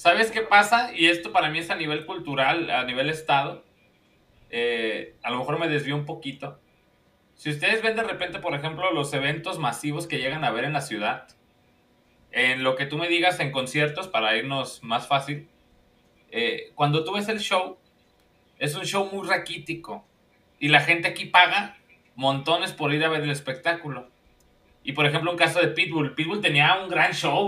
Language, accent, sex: Spanish, Mexican, male